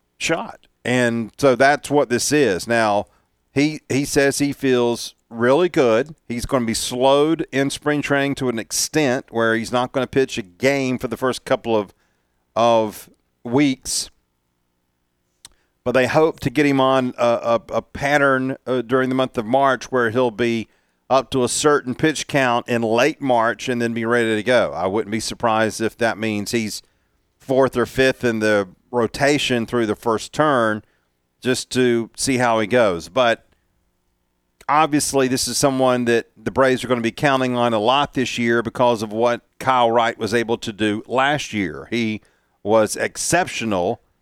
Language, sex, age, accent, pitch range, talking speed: English, male, 40-59, American, 110-130 Hz, 180 wpm